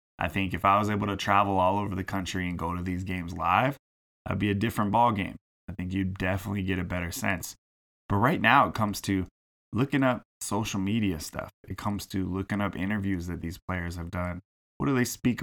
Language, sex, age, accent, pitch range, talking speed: English, male, 20-39, American, 90-105 Hz, 225 wpm